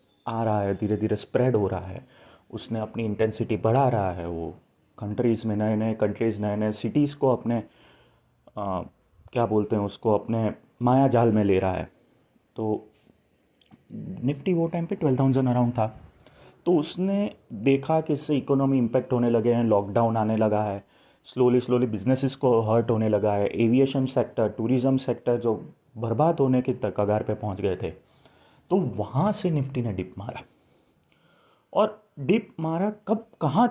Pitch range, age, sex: 110-150 Hz, 30-49, male